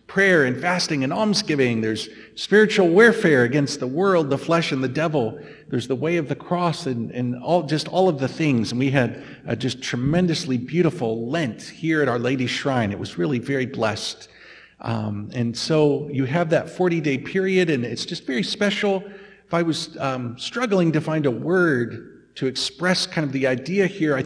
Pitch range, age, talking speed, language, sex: 130-180 Hz, 50-69, 195 wpm, English, male